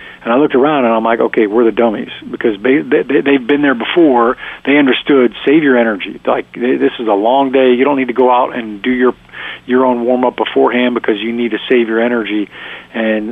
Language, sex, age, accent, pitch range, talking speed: English, male, 40-59, American, 115-145 Hz, 235 wpm